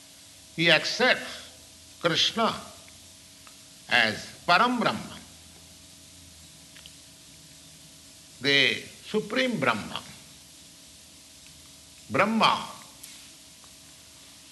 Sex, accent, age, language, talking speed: male, Indian, 60-79, English, 40 wpm